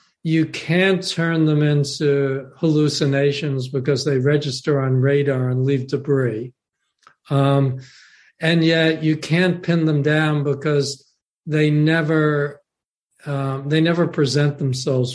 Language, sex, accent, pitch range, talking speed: English, male, American, 135-160 Hz, 120 wpm